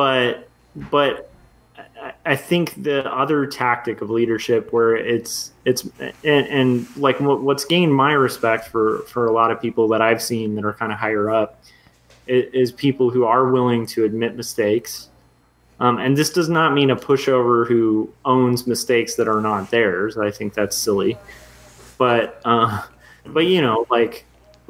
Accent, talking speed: American, 165 wpm